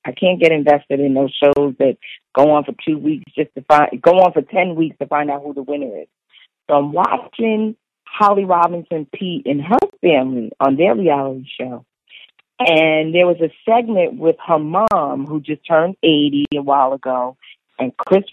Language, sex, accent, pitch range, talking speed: English, female, American, 145-185 Hz, 190 wpm